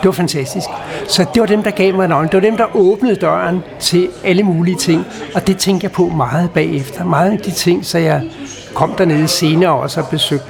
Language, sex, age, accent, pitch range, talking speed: Danish, male, 60-79, native, 155-190 Hz, 230 wpm